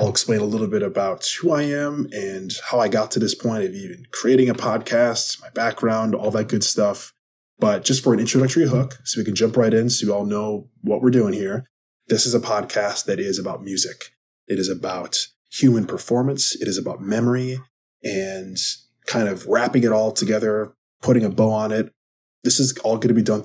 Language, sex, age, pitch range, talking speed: English, male, 20-39, 105-125 Hz, 210 wpm